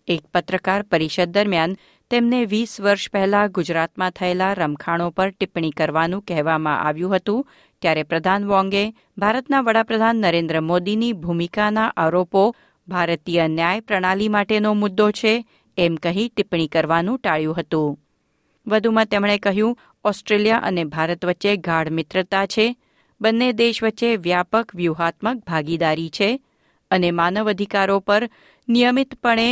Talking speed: 120 wpm